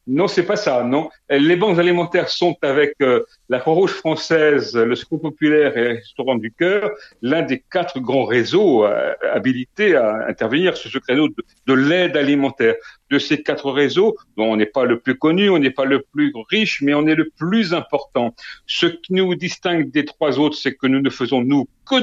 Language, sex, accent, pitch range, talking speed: French, male, French, 130-165 Hz, 200 wpm